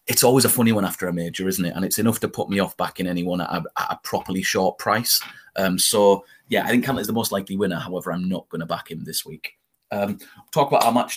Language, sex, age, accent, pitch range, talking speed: English, male, 30-49, British, 90-145 Hz, 265 wpm